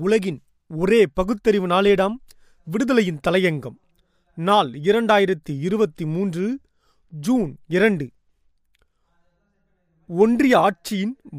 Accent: native